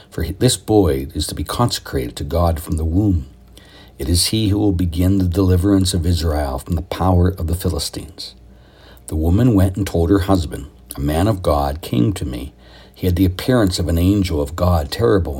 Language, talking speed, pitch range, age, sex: English, 205 wpm, 80-95 Hz, 60-79, male